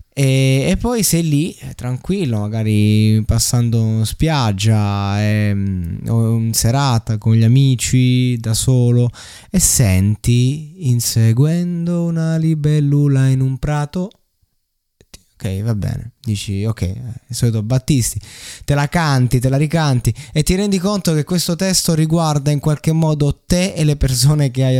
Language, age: Italian, 20-39